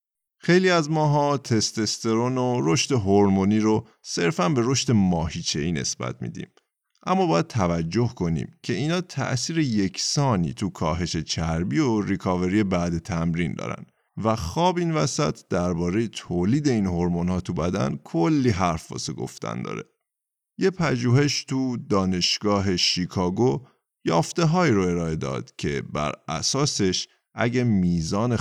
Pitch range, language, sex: 90-130 Hz, Persian, male